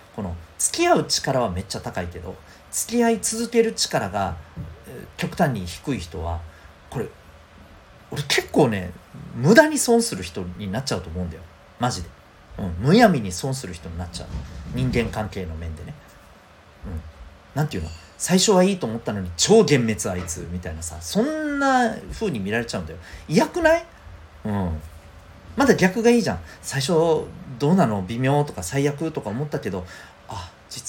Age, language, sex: 40-59, Japanese, male